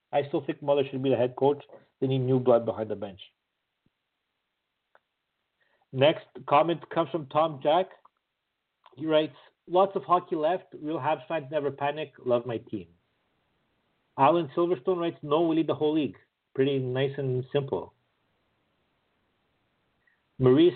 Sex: male